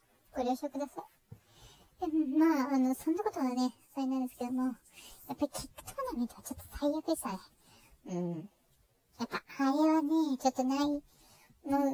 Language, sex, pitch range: Japanese, male, 240-310 Hz